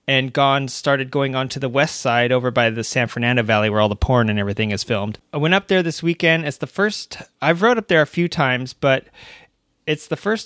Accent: American